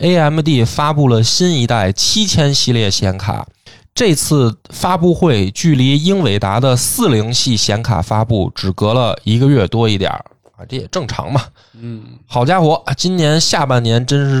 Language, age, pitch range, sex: Chinese, 20-39, 110-150 Hz, male